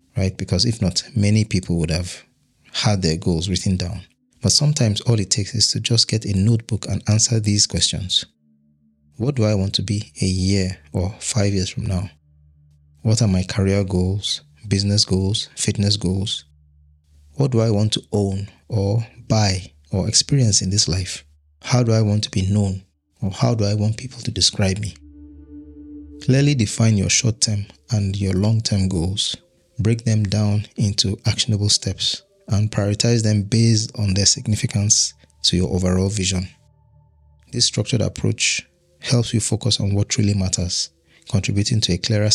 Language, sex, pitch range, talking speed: English, male, 90-110 Hz, 165 wpm